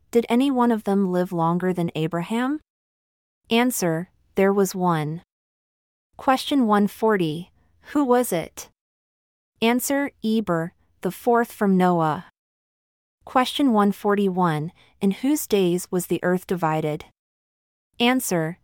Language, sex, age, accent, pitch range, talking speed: English, female, 30-49, American, 175-225 Hz, 110 wpm